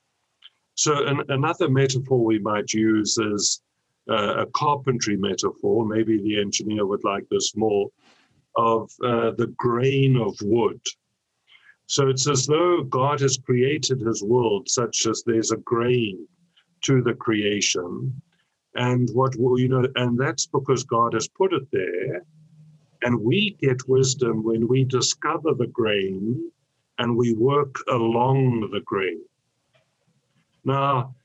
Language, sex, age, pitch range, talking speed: English, male, 50-69, 110-135 Hz, 135 wpm